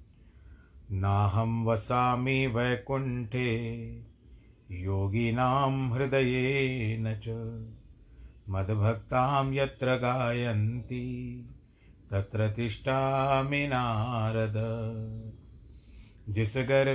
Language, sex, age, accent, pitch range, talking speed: Hindi, male, 50-69, native, 110-135 Hz, 35 wpm